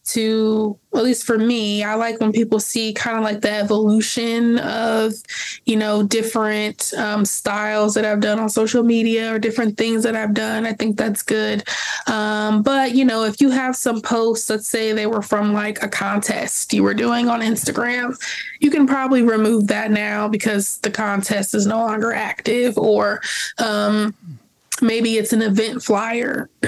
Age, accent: 20-39, American